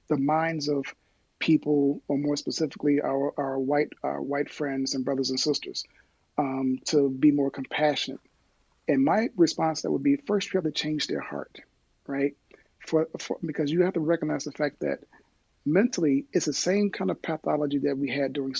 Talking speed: 185 wpm